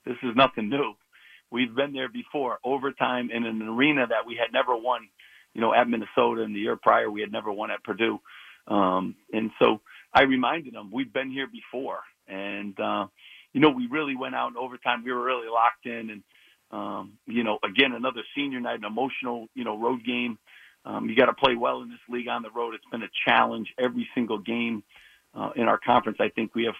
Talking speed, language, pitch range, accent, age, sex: 215 wpm, English, 115-140 Hz, American, 50-69, male